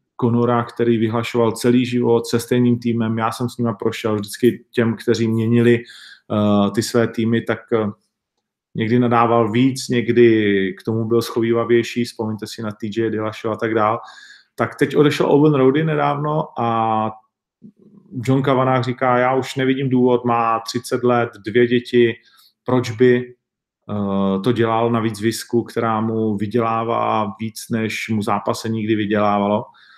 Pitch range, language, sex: 110-125 Hz, Czech, male